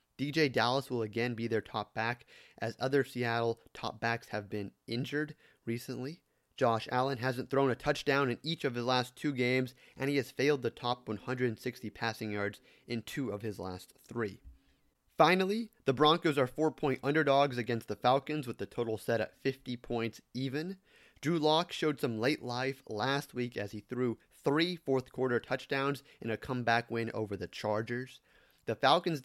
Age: 30-49